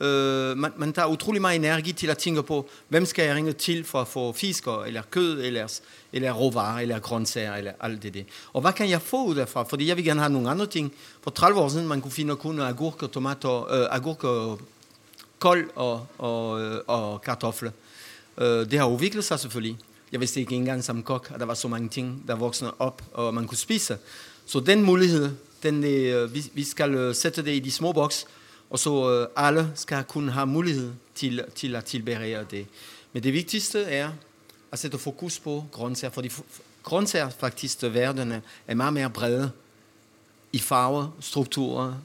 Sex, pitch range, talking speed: male, 120-145 Hz, 195 wpm